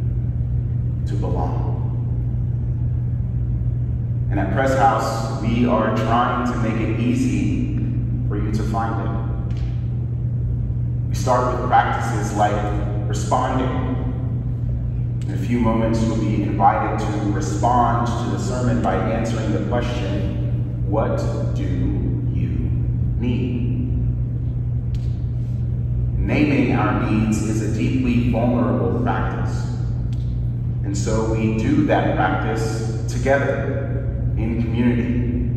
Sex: male